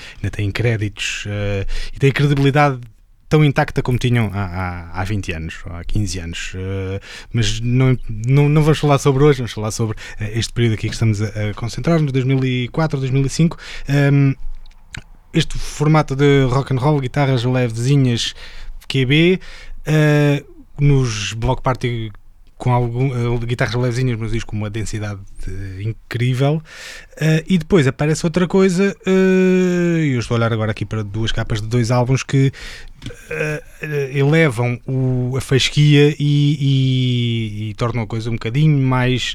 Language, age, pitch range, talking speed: English, 20-39, 110-145 Hz, 155 wpm